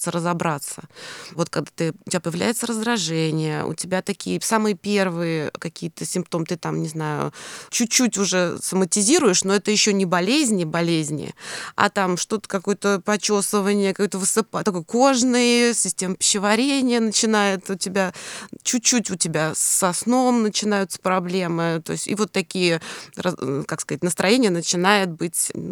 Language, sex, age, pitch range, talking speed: Russian, female, 20-39, 175-220 Hz, 135 wpm